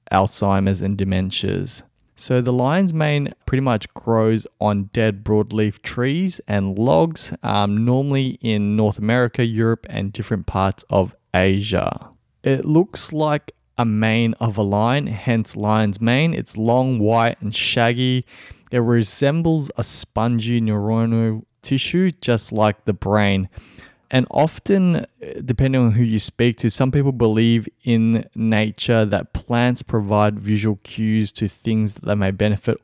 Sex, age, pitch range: male, 20-39, 105-125 Hz